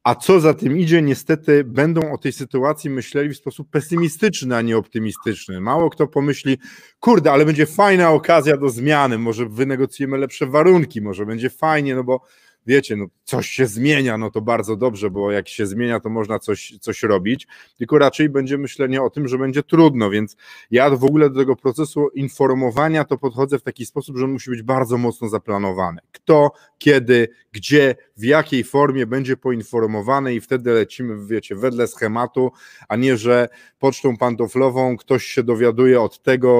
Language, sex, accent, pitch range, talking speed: Polish, male, native, 115-140 Hz, 175 wpm